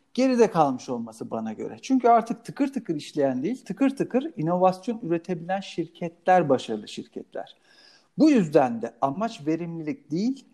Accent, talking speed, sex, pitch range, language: native, 135 wpm, male, 150-230 Hz, Turkish